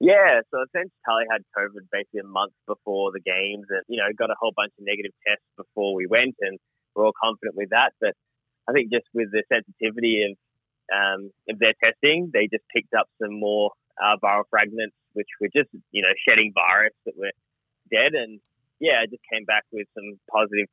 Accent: Australian